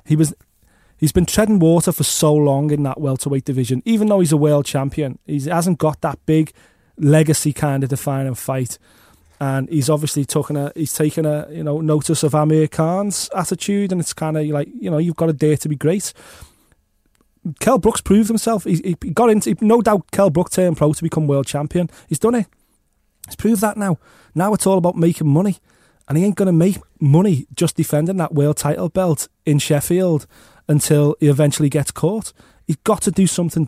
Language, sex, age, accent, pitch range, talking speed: English, male, 30-49, British, 150-185 Hz, 200 wpm